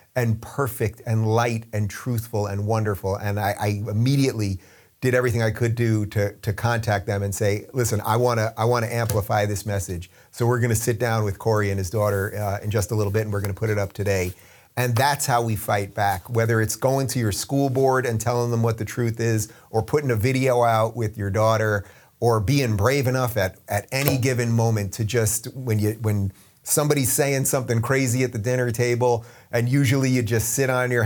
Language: English